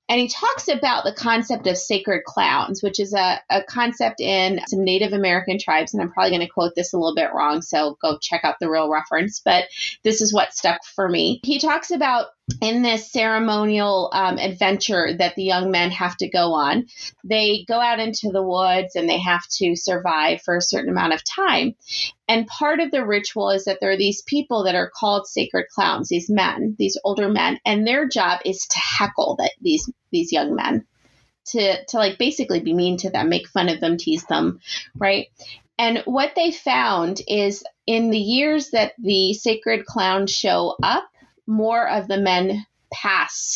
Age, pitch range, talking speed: 30-49, 185-240 Hz, 195 wpm